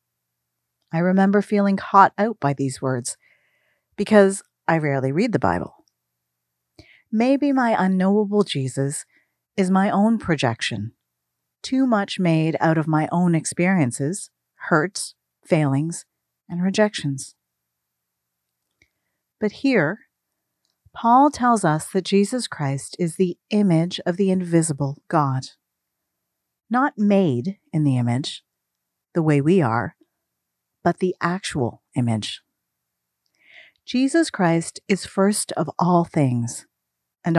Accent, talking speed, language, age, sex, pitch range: American, 110 wpm, English, 40-59, female, 120-195 Hz